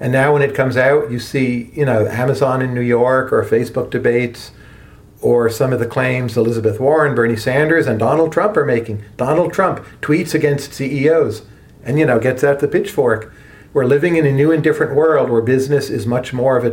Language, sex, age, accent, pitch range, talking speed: English, male, 40-59, American, 115-145 Hz, 210 wpm